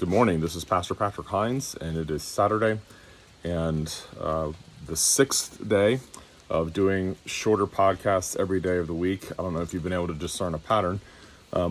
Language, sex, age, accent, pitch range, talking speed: English, male, 30-49, American, 85-110 Hz, 190 wpm